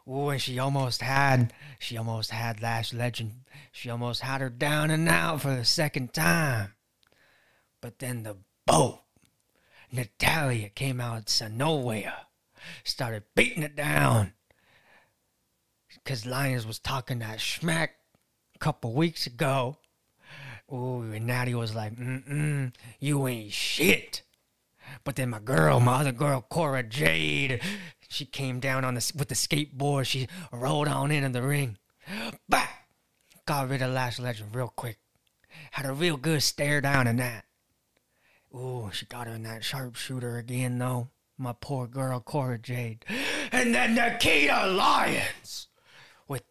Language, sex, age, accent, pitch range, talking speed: English, male, 30-49, American, 120-145 Hz, 145 wpm